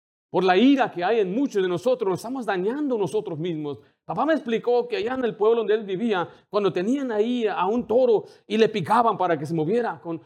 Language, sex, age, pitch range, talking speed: Spanish, male, 40-59, 180-285 Hz, 230 wpm